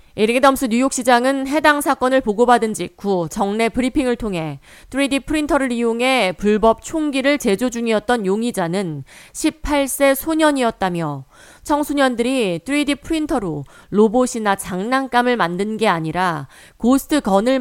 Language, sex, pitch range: Korean, female, 185-260 Hz